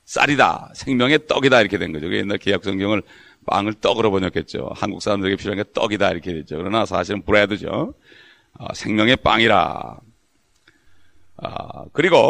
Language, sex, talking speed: English, male, 120 wpm